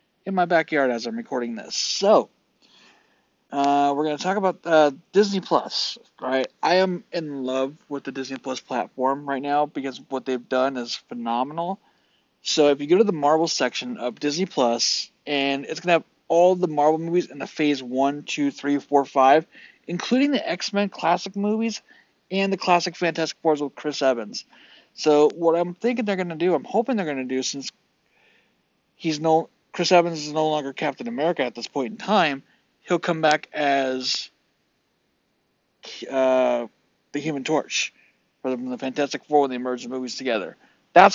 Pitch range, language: 140-175 Hz, English